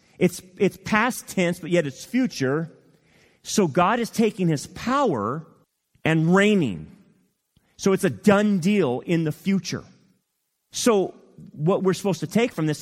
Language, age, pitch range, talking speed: English, 30-49, 130-185 Hz, 150 wpm